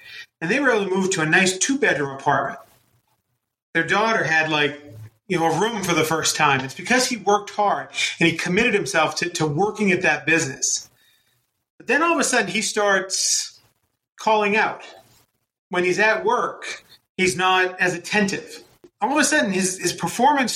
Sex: male